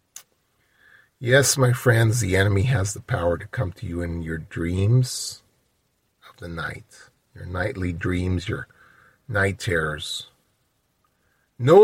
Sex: male